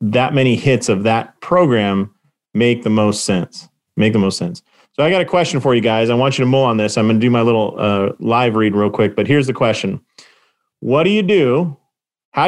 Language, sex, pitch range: English, male, 115-150 Hz